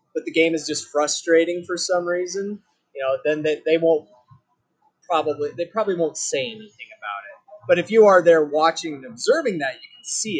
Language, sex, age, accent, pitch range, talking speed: English, male, 30-49, American, 145-210 Hz, 200 wpm